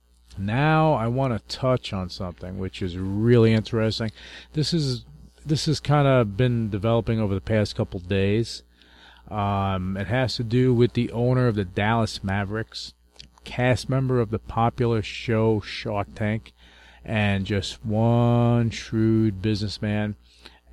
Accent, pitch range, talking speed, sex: American, 95-120 Hz, 140 wpm, male